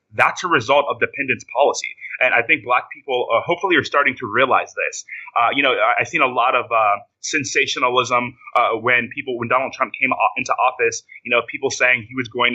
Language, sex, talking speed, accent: English, male, 210 wpm, American